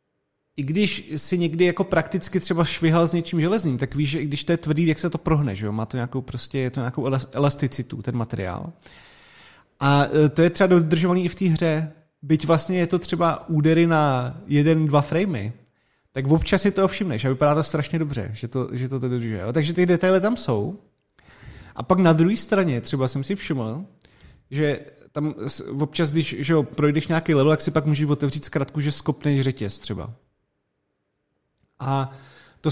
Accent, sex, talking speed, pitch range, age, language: native, male, 195 wpm, 135-165 Hz, 30-49, Czech